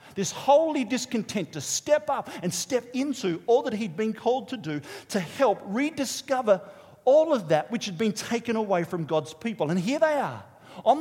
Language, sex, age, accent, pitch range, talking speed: English, male, 40-59, Australian, 170-245 Hz, 190 wpm